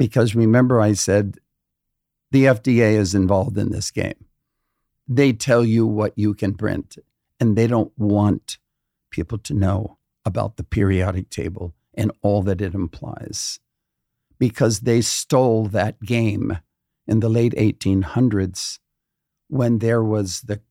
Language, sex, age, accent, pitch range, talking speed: English, male, 50-69, American, 100-120 Hz, 135 wpm